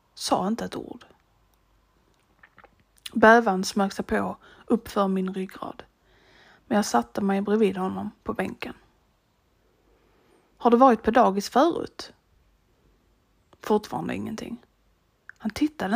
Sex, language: female, Swedish